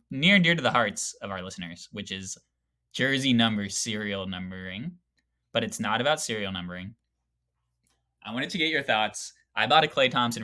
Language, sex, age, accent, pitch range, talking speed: English, male, 20-39, American, 95-120 Hz, 185 wpm